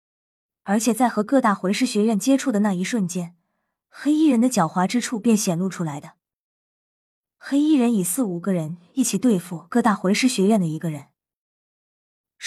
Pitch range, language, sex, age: 180-250 Hz, Chinese, female, 20-39